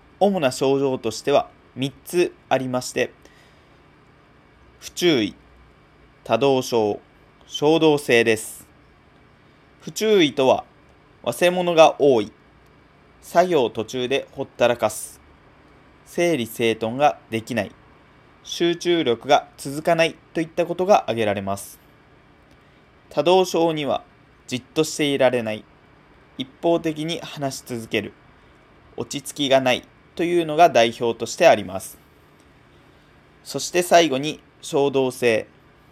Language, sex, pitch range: Japanese, male, 120-165 Hz